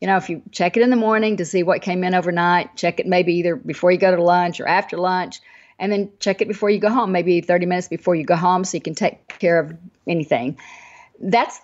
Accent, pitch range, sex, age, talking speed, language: American, 175-215 Hz, female, 50-69, 260 wpm, English